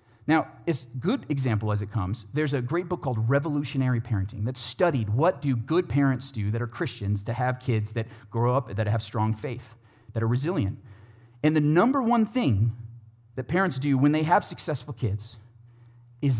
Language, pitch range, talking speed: English, 110-145 Hz, 185 wpm